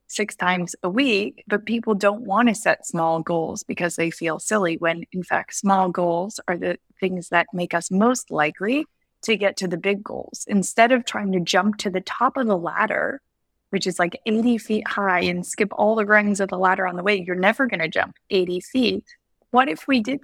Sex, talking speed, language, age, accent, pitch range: female, 220 wpm, English, 20-39, American, 180-220 Hz